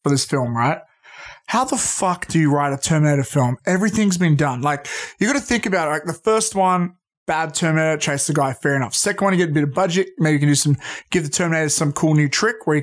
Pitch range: 145-180 Hz